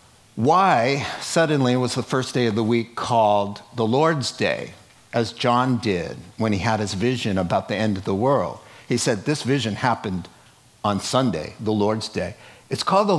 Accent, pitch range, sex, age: American, 110-150 Hz, male, 50-69